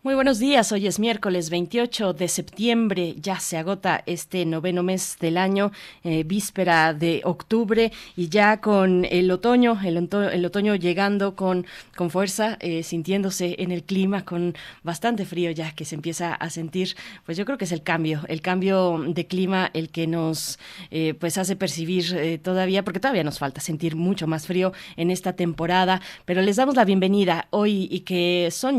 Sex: female